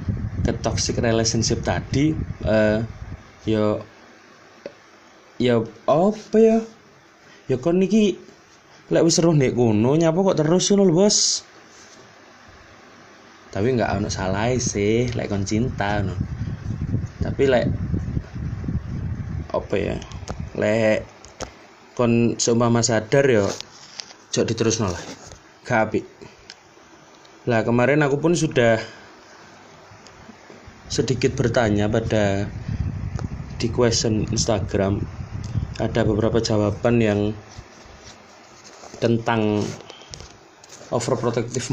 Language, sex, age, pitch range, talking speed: Indonesian, male, 20-39, 110-125 Hz, 90 wpm